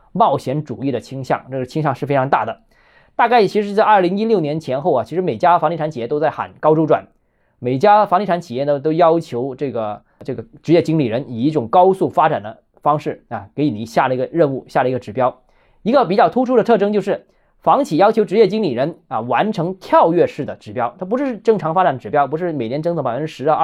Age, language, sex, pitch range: 20-39, Chinese, male, 135-190 Hz